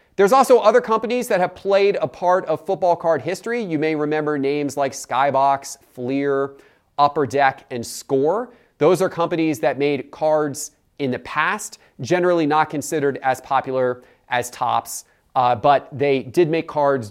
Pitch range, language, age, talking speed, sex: 125-165 Hz, English, 30-49, 160 wpm, male